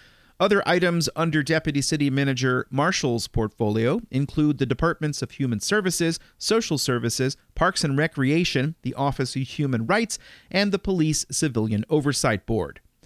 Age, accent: 40-59, American